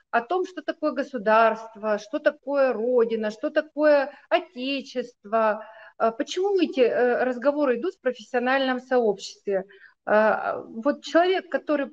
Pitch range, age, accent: 230-295 Hz, 30-49, native